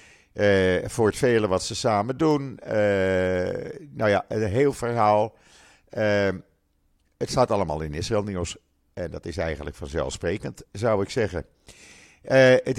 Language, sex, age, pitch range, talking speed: Dutch, male, 50-69, 85-120 Hz, 145 wpm